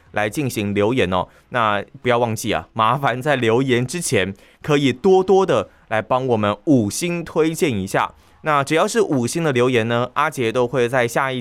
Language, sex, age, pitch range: Chinese, male, 20-39, 110-150 Hz